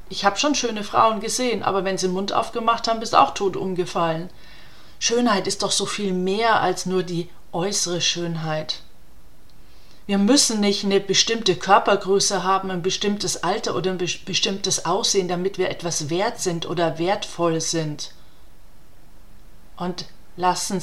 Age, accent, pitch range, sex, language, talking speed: 40-59, German, 175-200 Hz, female, German, 150 wpm